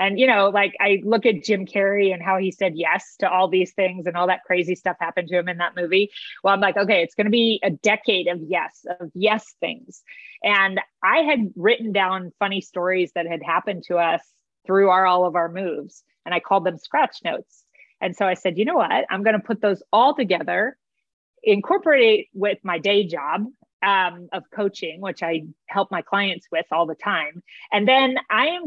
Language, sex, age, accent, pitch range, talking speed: English, female, 30-49, American, 180-230 Hz, 220 wpm